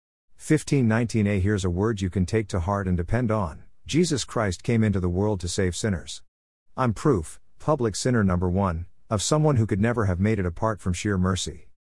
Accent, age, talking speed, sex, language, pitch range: American, 50-69, 200 wpm, male, English, 85-115 Hz